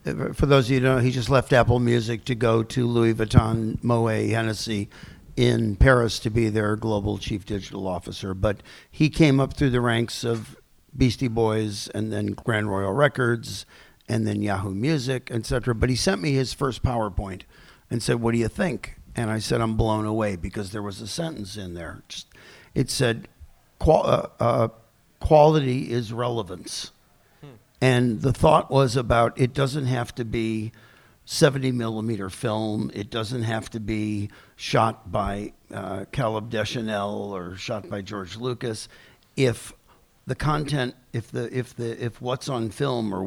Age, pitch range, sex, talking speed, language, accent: 50-69, 105-125 Hz, male, 165 wpm, English, American